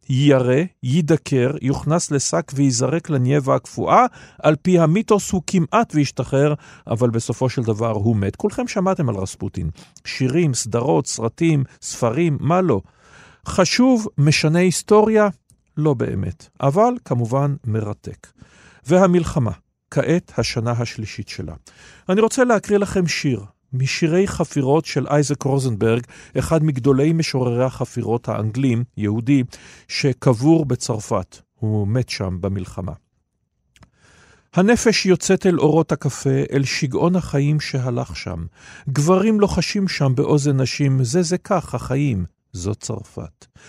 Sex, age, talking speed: male, 40-59, 115 wpm